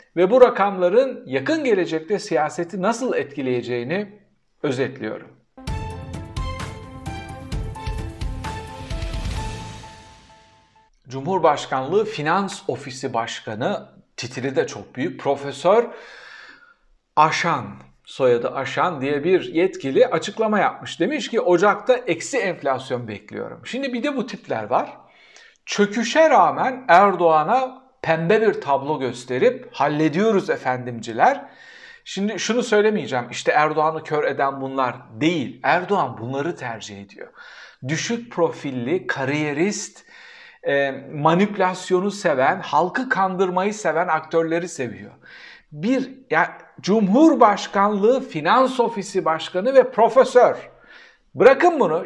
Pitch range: 135-225 Hz